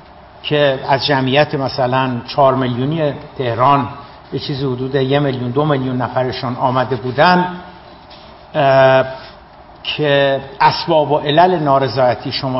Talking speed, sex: 105 wpm, male